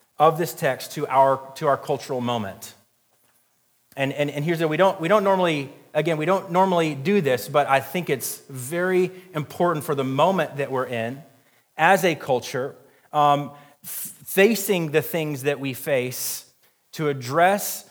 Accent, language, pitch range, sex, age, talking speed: American, English, 145-185 Hz, male, 30-49, 170 wpm